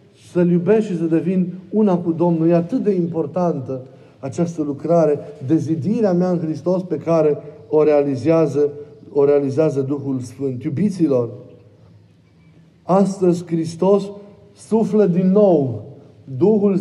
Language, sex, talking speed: Romanian, male, 120 wpm